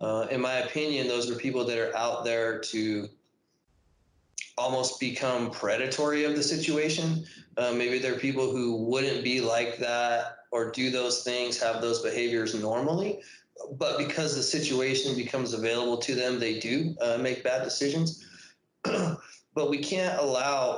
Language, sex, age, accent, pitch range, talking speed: English, male, 20-39, American, 120-145 Hz, 155 wpm